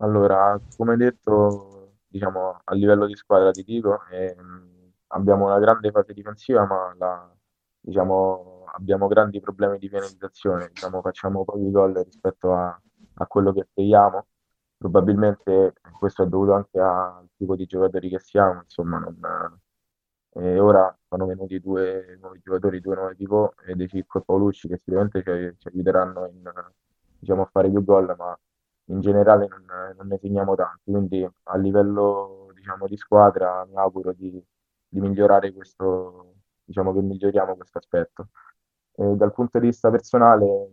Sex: male